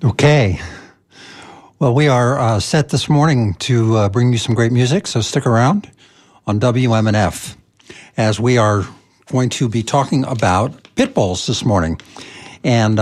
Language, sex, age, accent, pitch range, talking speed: English, male, 60-79, American, 100-135 Hz, 150 wpm